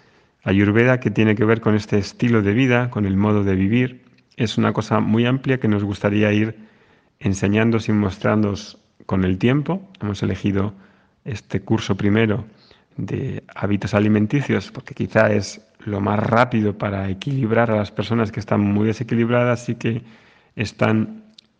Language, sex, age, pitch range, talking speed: Spanish, male, 30-49, 100-115 Hz, 155 wpm